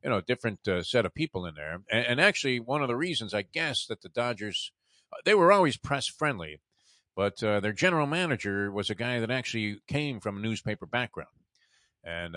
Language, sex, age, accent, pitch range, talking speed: English, male, 50-69, American, 100-140 Hz, 205 wpm